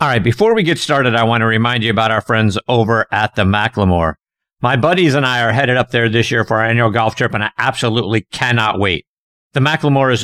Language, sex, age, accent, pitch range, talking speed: English, male, 50-69, American, 105-140 Hz, 240 wpm